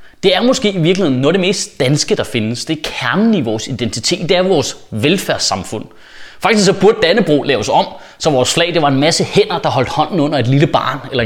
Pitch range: 145-205 Hz